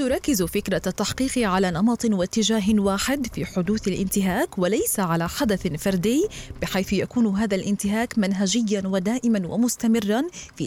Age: 20-39